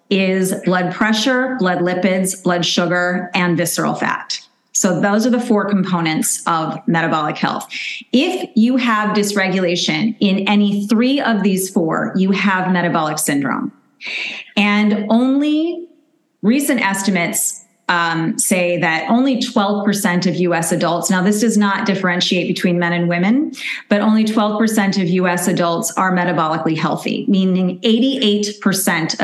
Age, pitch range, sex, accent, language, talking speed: 30-49, 180-230 Hz, female, American, English, 135 wpm